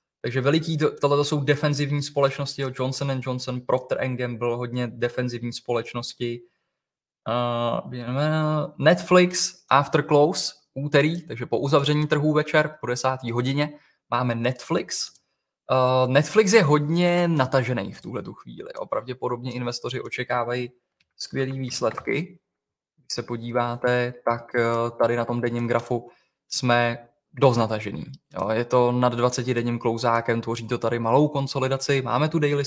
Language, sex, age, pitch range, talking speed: Czech, male, 20-39, 120-145 Hz, 125 wpm